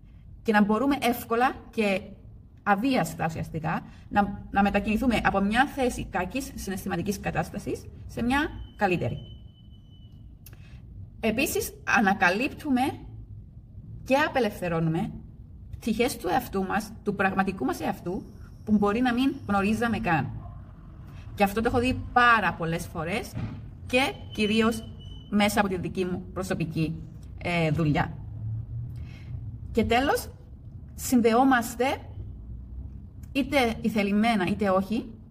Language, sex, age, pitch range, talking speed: Greek, female, 30-49, 165-235 Hz, 105 wpm